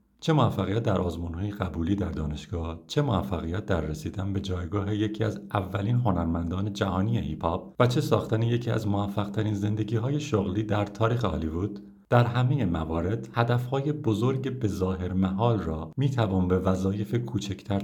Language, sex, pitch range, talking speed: Persian, male, 85-110 Hz, 145 wpm